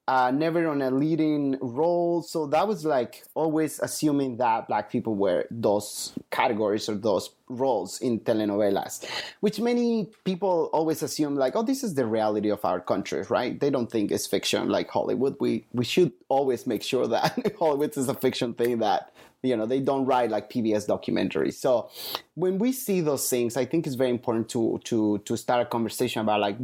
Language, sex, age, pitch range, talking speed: English, male, 30-49, 120-165 Hz, 190 wpm